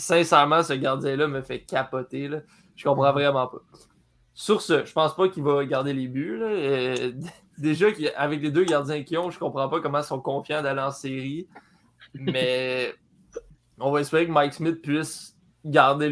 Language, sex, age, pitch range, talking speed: French, male, 20-39, 135-160 Hz, 180 wpm